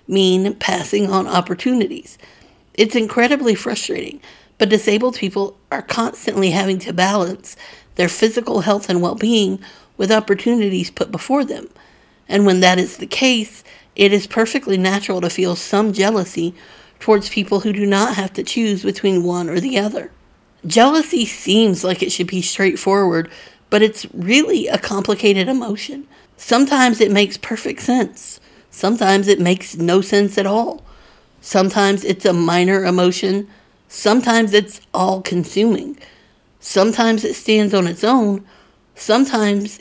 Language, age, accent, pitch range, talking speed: English, 50-69, American, 190-225 Hz, 140 wpm